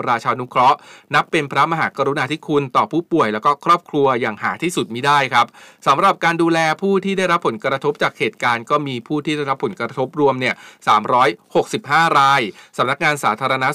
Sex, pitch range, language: male, 120-155 Hz, Thai